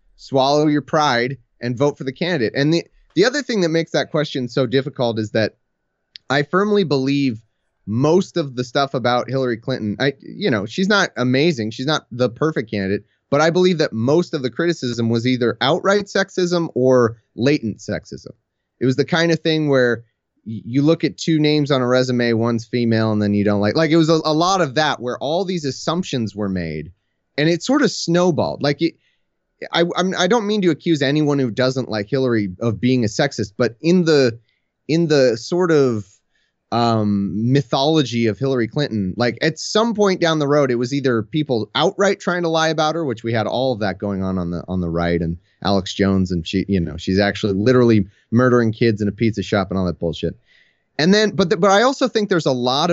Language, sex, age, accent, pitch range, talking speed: English, male, 30-49, American, 110-160 Hz, 215 wpm